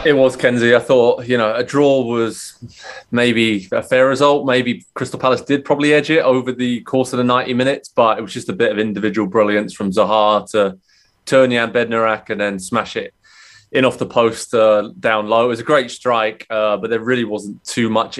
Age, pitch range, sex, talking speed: 20-39, 105-125 Hz, male, 220 wpm